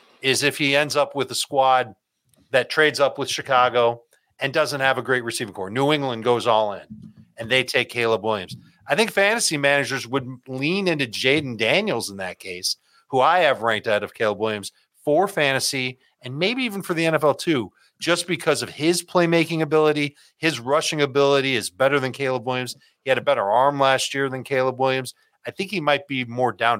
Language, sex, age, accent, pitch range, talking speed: English, male, 40-59, American, 120-155 Hz, 200 wpm